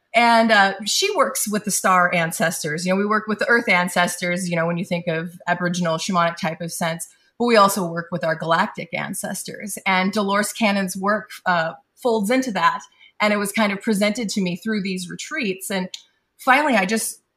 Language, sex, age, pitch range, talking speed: English, female, 30-49, 180-225 Hz, 200 wpm